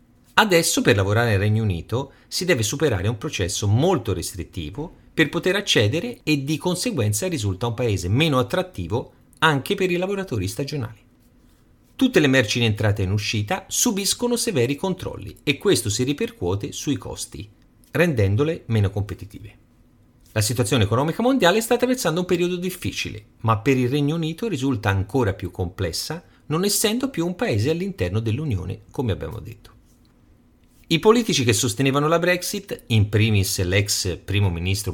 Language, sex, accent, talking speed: Italian, male, native, 150 wpm